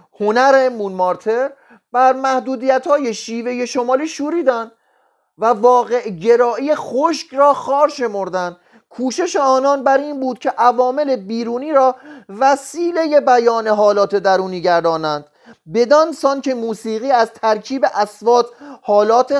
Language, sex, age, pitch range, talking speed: Persian, male, 30-49, 185-260 Hz, 120 wpm